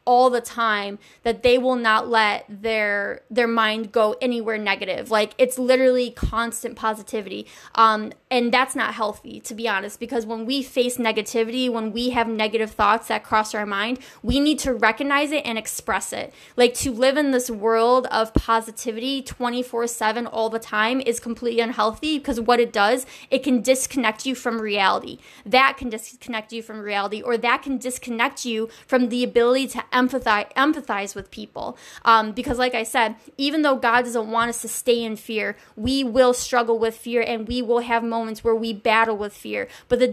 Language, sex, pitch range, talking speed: English, female, 225-255 Hz, 185 wpm